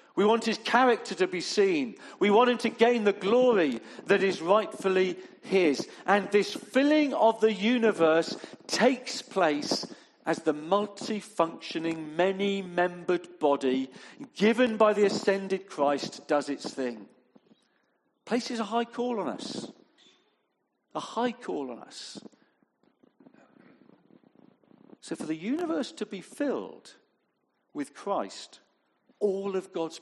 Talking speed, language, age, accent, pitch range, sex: 125 wpm, English, 50-69, British, 170-240 Hz, male